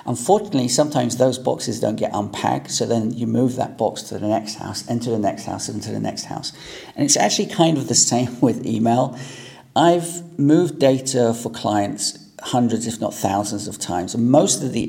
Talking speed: 200 wpm